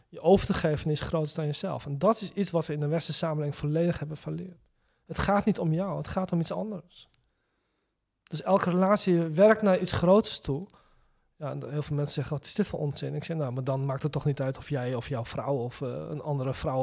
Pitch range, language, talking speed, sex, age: 150-185 Hz, Dutch, 255 wpm, male, 40-59